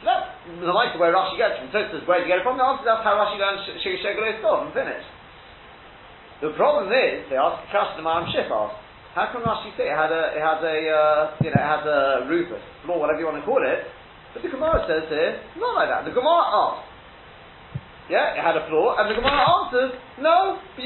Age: 30-49